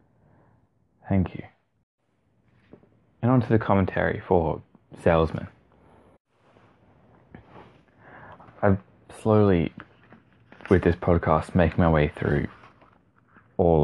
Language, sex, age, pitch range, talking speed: English, male, 20-39, 80-110 Hz, 80 wpm